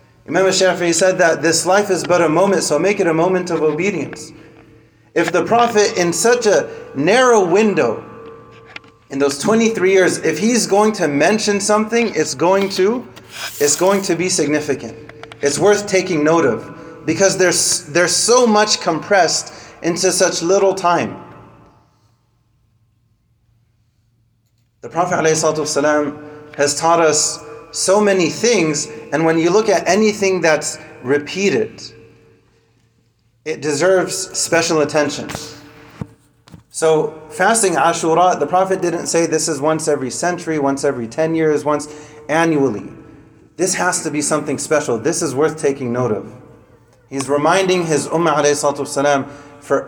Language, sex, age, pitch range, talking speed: English, male, 30-49, 145-180 Hz, 135 wpm